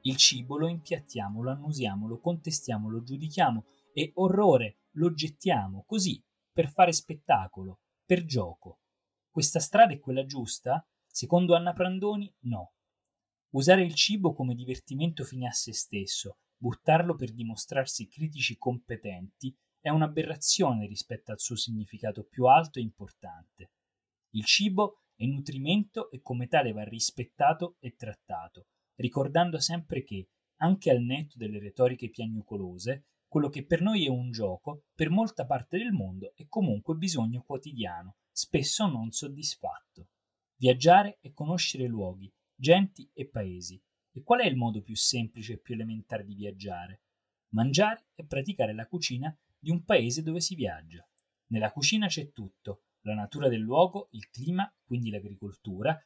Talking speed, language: 145 wpm, Italian